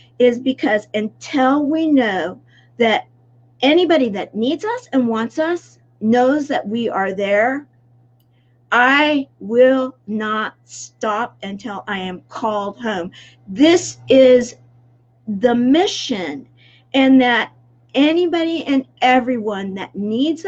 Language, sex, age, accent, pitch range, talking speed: English, female, 50-69, American, 180-260 Hz, 110 wpm